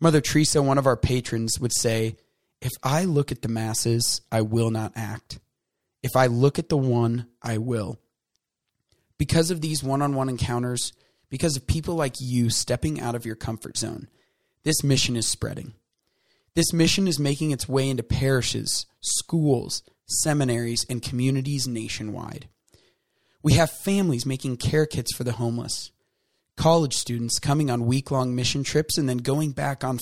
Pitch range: 115-145 Hz